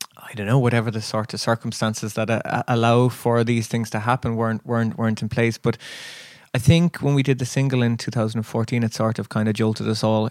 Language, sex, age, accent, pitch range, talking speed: English, male, 20-39, Irish, 110-130 Hz, 245 wpm